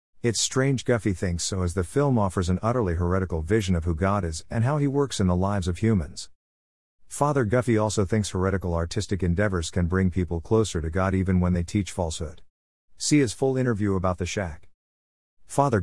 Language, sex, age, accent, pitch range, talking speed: English, male, 50-69, American, 85-110 Hz, 195 wpm